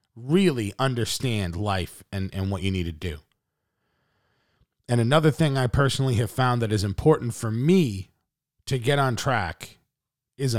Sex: male